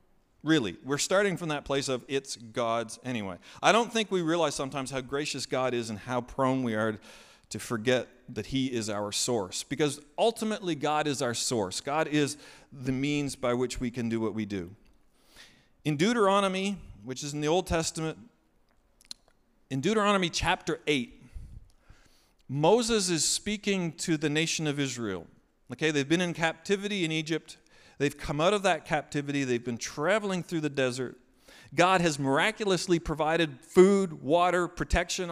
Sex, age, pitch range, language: male, 40-59, 135-180 Hz, English